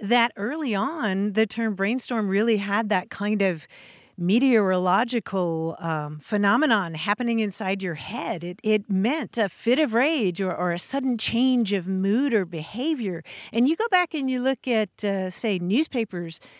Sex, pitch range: female, 190-235 Hz